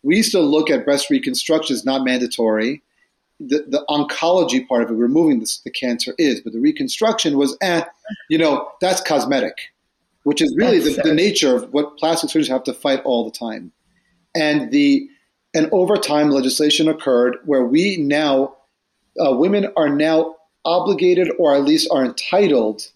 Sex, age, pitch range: male, 30-49, 130-190 Hz